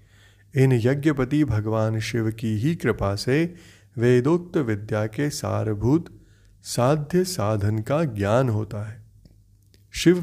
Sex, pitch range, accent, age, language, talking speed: male, 105-145 Hz, native, 30-49, Hindi, 110 wpm